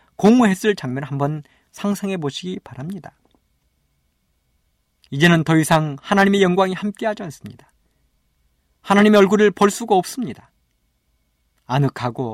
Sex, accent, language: male, native, Korean